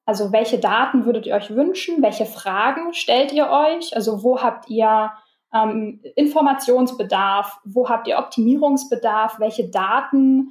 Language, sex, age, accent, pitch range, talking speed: German, female, 10-29, German, 215-260 Hz, 135 wpm